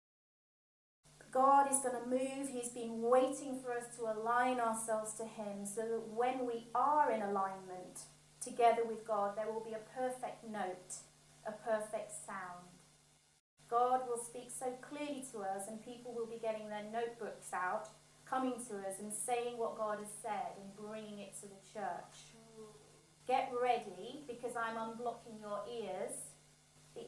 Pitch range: 210-245 Hz